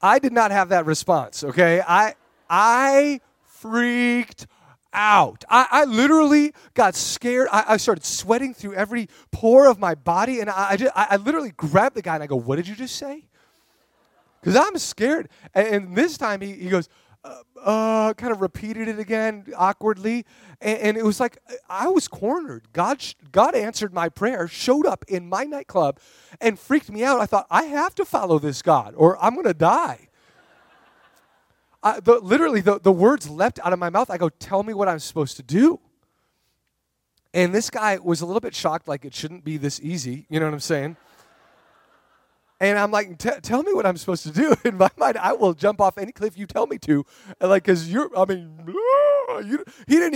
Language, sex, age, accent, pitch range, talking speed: English, male, 30-49, American, 165-240 Hz, 200 wpm